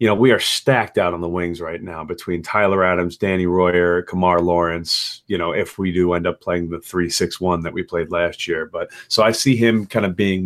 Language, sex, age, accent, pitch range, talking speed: English, male, 30-49, American, 90-115 Hz, 235 wpm